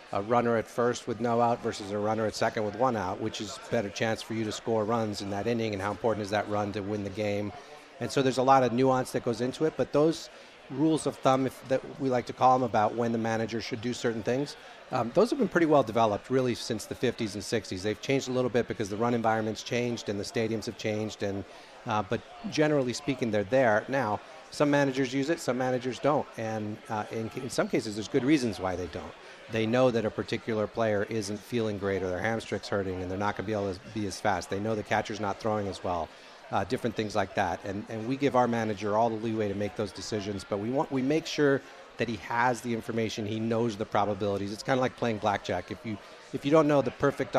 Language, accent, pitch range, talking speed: English, American, 105-130 Hz, 255 wpm